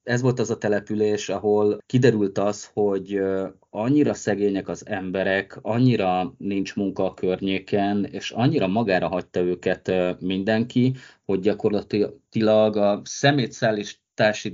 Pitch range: 95-120 Hz